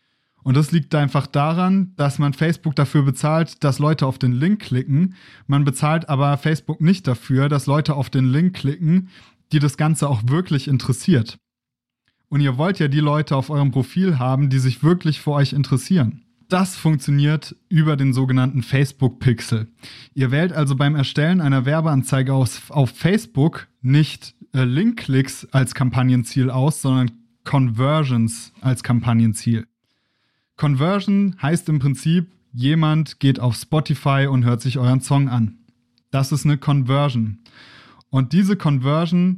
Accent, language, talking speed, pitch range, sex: German, German, 145 wpm, 130-165 Hz, male